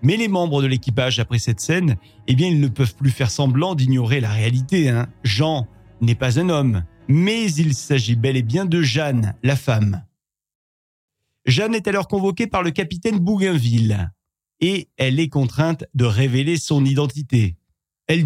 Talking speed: 170 wpm